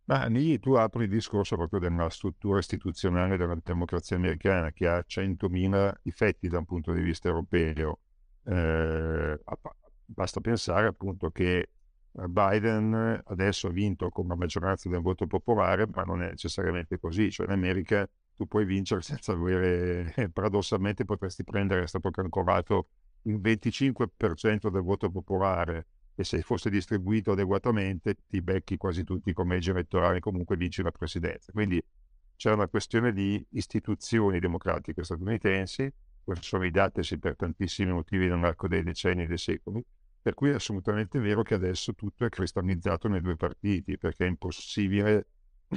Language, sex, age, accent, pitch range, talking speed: Italian, male, 50-69, native, 90-105 Hz, 145 wpm